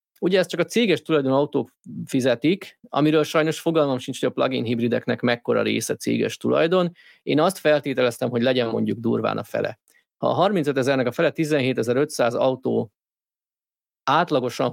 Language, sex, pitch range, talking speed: Hungarian, male, 130-160 Hz, 155 wpm